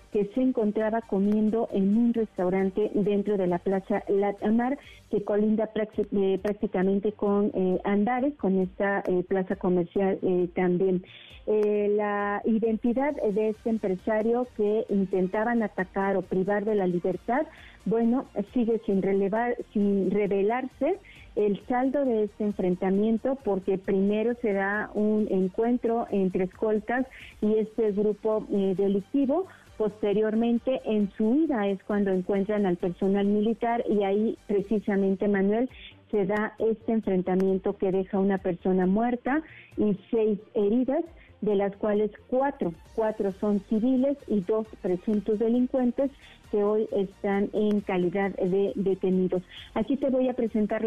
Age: 40-59